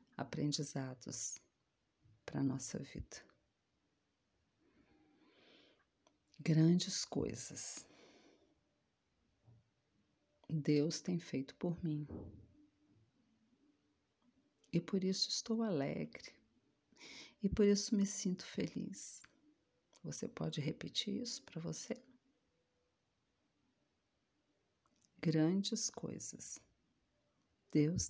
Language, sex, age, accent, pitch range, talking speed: Portuguese, female, 40-59, Brazilian, 140-195 Hz, 70 wpm